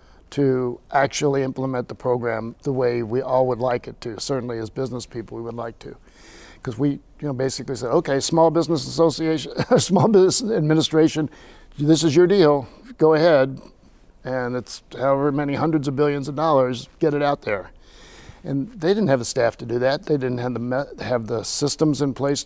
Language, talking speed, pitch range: English, 190 wpm, 120-150 Hz